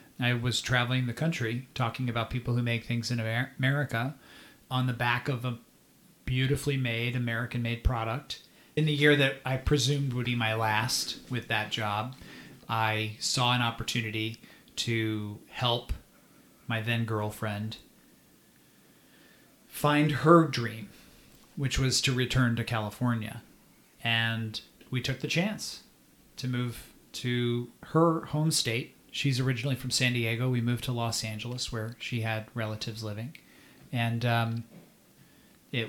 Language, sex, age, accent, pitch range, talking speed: English, male, 40-59, American, 115-130 Hz, 140 wpm